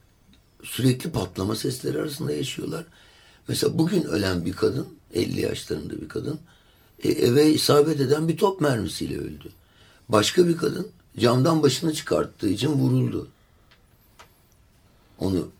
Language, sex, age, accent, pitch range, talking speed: Turkish, male, 60-79, native, 90-120 Hz, 115 wpm